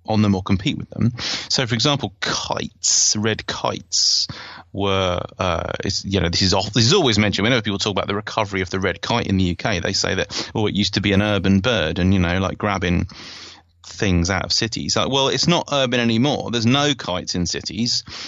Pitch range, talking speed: 90-110 Hz, 225 wpm